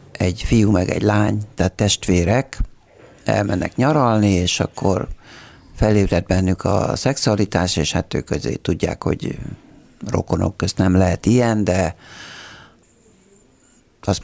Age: 60-79